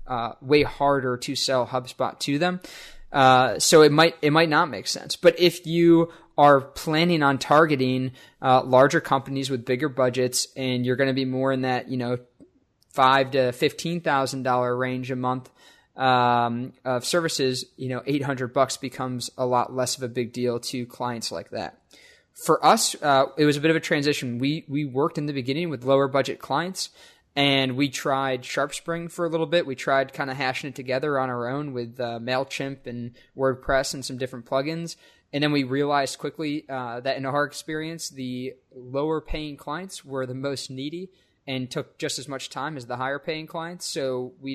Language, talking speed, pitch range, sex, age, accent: English, 195 wpm, 125-145 Hz, male, 20-39, American